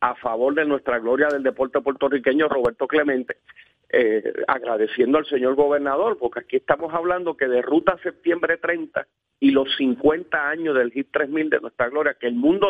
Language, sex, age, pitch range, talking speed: Spanish, male, 40-59, 135-170 Hz, 175 wpm